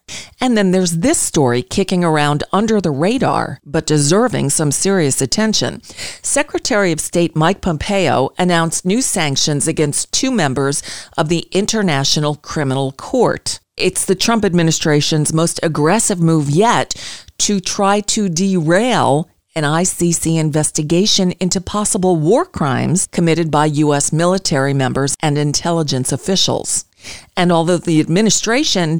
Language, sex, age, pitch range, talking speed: English, female, 40-59, 145-185 Hz, 130 wpm